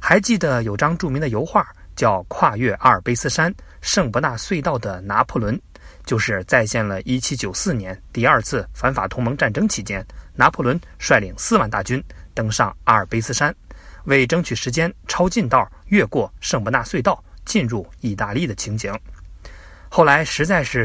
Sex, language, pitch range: male, Chinese, 100-155 Hz